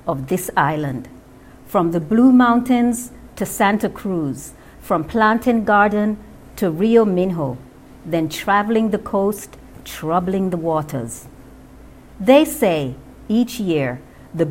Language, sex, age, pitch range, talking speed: English, female, 50-69, 160-230 Hz, 115 wpm